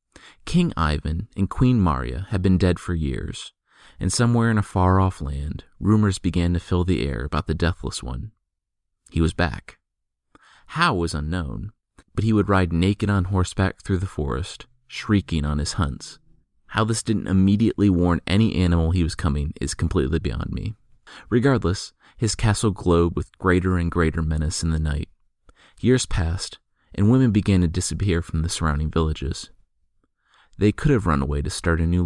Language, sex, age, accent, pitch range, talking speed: English, male, 30-49, American, 80-100 Hz, 170 wpm